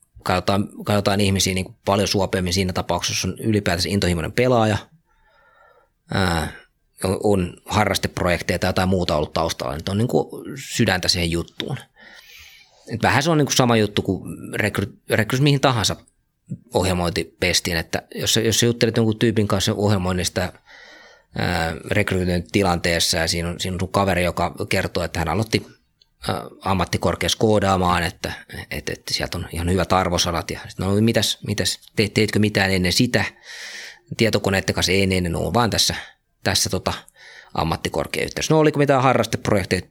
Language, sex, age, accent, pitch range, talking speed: Finnish, male, 30-49, native, 90-110 Hz, 140 wpm